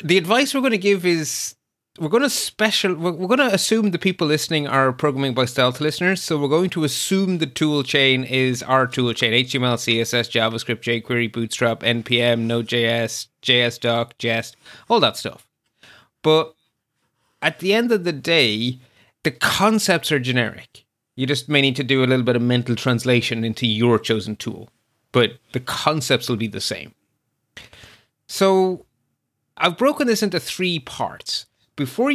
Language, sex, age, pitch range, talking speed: English, male, 30-49, 120-175 Hz, 170 wpm